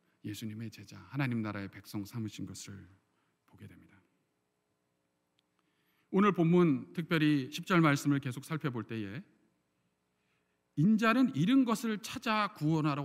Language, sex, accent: Korean, male, native